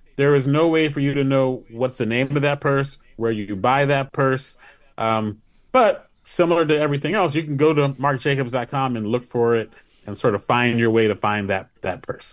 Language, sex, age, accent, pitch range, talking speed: English, male, 30-49, American, 110-145 Hz, 220 wpm